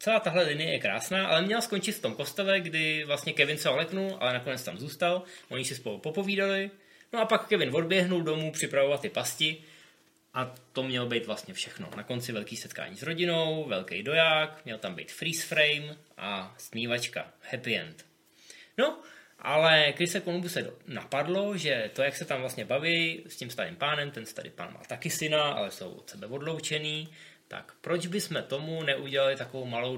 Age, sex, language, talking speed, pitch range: 20-39, male, Czech, 185 wpm, 120-155 Hz